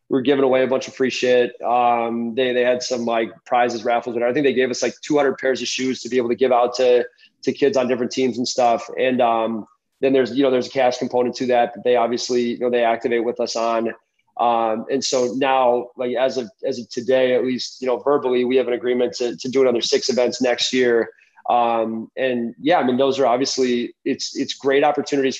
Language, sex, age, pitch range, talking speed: English, male, 20-39, 115-130 Hz, 240 wpm